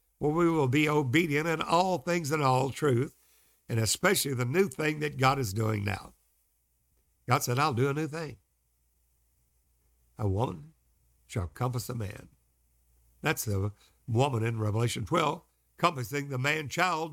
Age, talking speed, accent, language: 60-79, 155 wpm, American, English